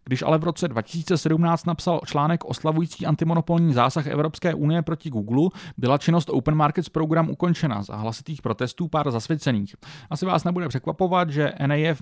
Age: 30-49